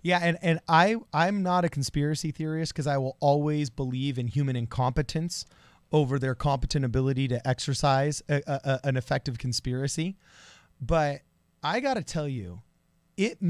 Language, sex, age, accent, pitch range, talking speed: English, male, 30-49, American, 135-180 Hz, 140 wpm